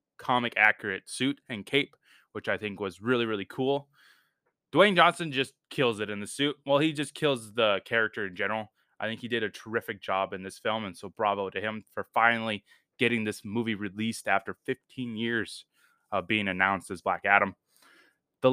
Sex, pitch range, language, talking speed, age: male, 105-140 Hz, English, 190 wpm, 20-39